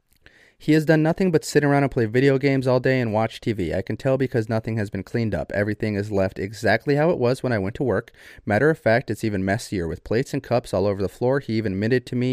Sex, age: male, 30-49